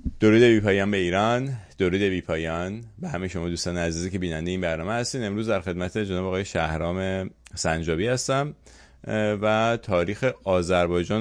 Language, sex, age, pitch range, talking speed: English, male, 30-49, 85-105 Hz, 145 wpm